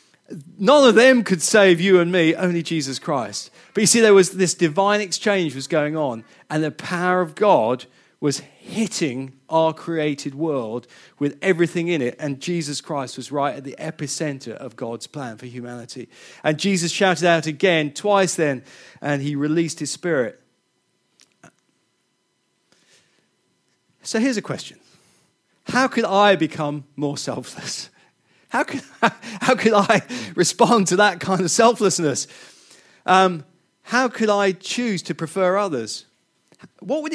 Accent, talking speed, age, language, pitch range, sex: British, 145 wpm, 40-59, English, 150-205 Hz, male